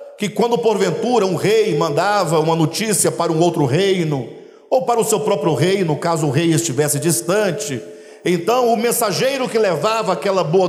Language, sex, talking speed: Portuguese, male, 170 wpm